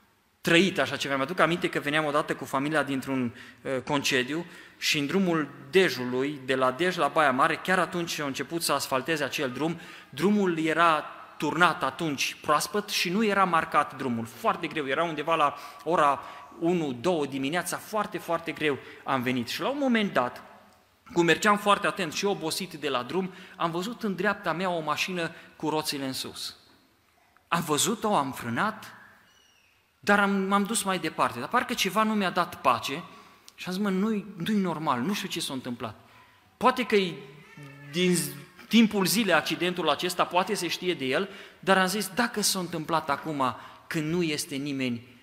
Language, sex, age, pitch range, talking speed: Romanian, male, 30-49, 140-190 Hz, 175 wpm